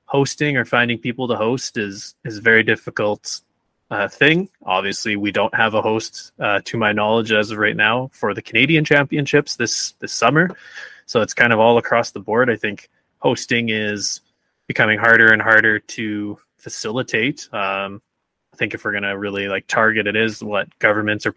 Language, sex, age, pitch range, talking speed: English, male, 20-39, 100-115 Hz, 185 wpm